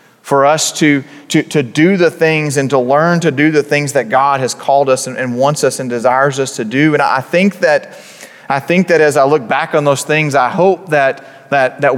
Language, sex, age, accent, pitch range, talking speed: English, male, 30-49, American, 125-150 Hz, 240 wpm